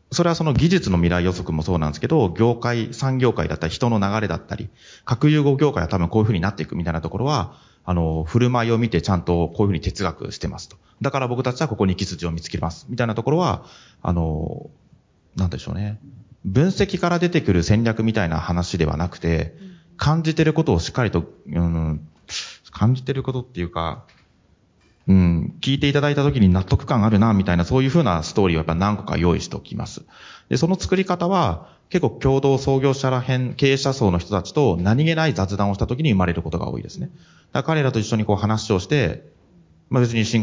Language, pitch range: Japanese, 90-135 Hz